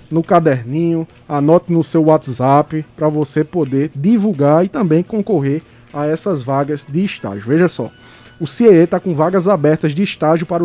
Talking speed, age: 165 wpm, 20-39